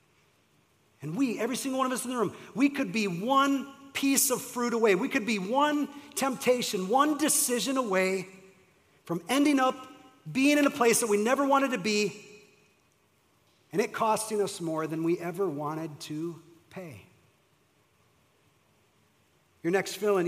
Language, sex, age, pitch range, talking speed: English, male, 40-59, 165-210 Hz, 155 wpm